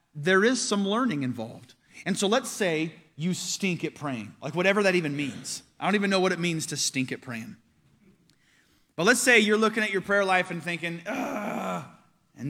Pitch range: 145-200 Hz